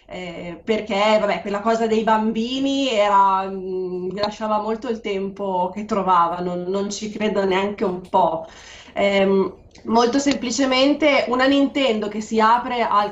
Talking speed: 140 wpm